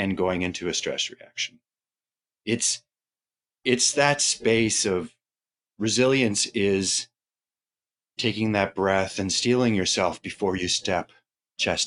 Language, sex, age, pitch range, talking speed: English, male, 30-49, 85-105 Hz, 115 wpm